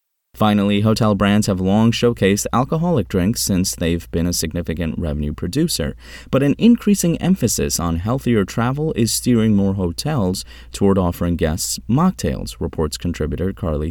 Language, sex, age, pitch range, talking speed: English, male, 30-49, 80-120 Hz, 140 wpm